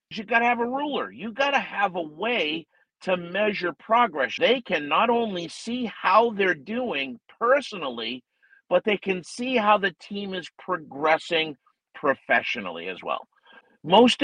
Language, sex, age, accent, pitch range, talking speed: English, male, 50-69, American, 165-215 Hz, 155 wpm